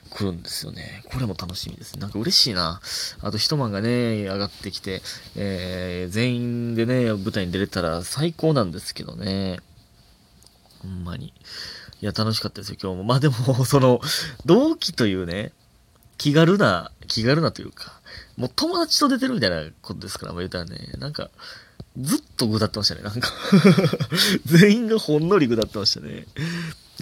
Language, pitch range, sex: Japanese, 100-165 Hz, male